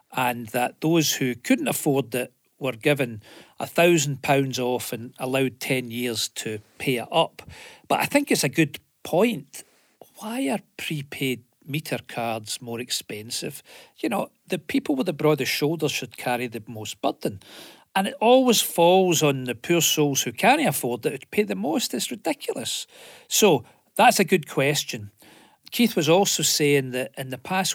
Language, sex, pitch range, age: English, male, 125-180 Hz, 40-59